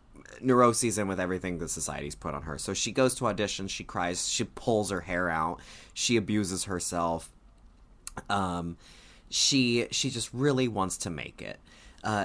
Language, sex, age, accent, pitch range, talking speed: English, male, 20-39, American, 95-125 Hz, 165 wpm